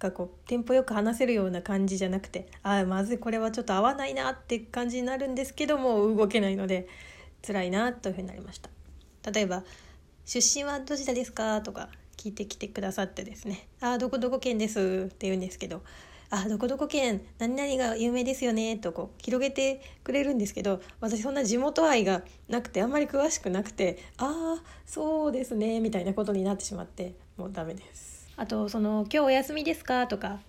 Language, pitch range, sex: Japanese, 195-255 Hz, female